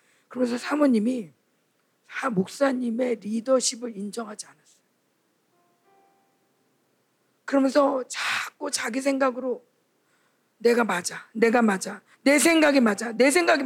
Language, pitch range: Korean, 220-290 Hz